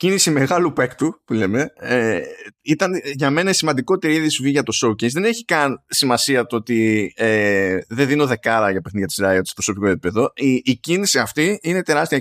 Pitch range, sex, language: 120-195 Hz, male, Greek